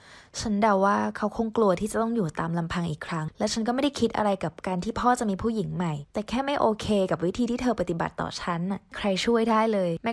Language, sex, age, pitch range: Thai, female, 20-39, 175-230 Hz